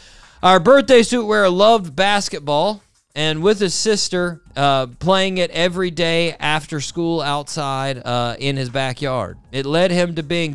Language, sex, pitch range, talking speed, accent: English, male, 145-180 Hz, 155 wpm, American